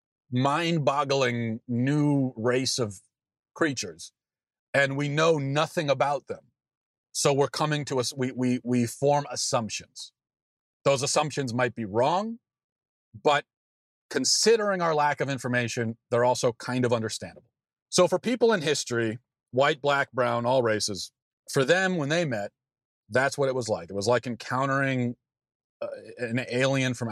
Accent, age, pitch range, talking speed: American, 40-59, 120-150 Hz, 140 wpm